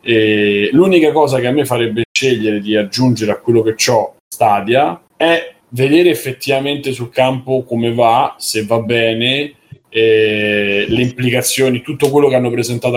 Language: Italian